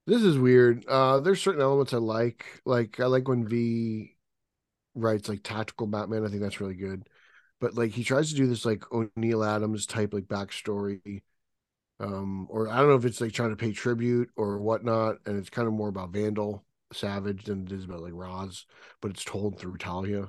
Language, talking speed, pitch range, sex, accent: English, 205 wpm, 100-130 Hz, male, American